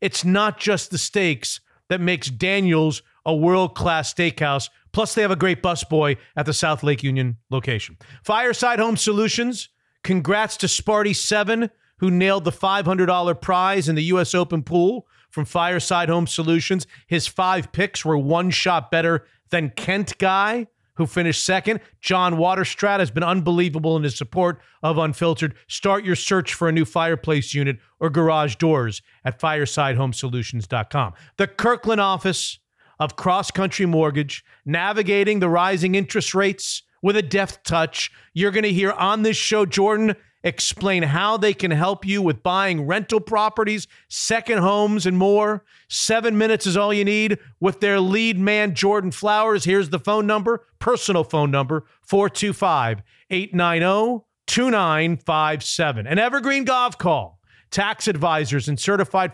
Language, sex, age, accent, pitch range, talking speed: English, male, 40-59, American, 160-205 Hz, 145 wpm